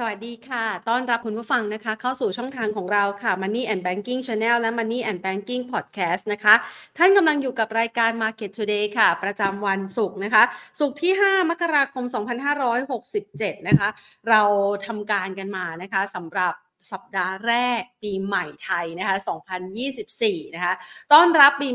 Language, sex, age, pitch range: Thai, female, 30-49, 200-250 Hz